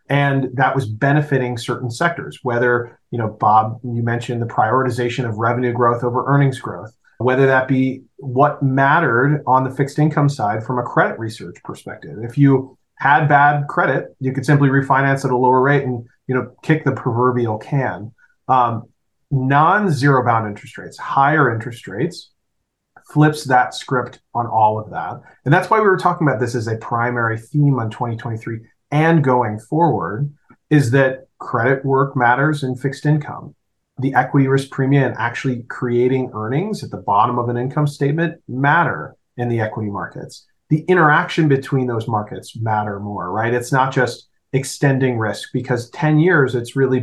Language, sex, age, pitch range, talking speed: English, male, 30-49, 120-145 Hz, 170 wpm